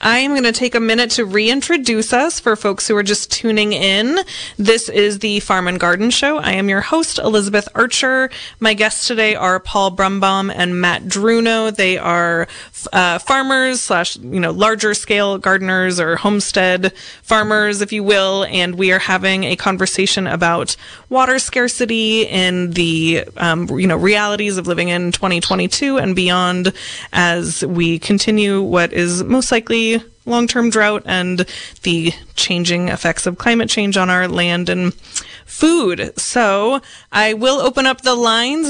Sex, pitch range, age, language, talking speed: female, 185-230 Hz, 20-39, English, 160 wpm